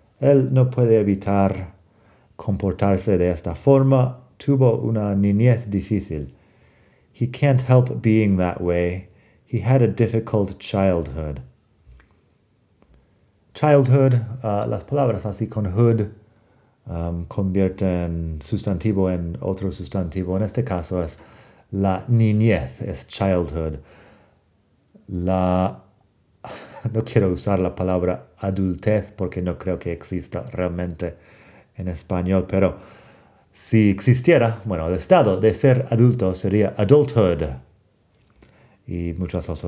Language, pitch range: Spanish, 90-115 Hz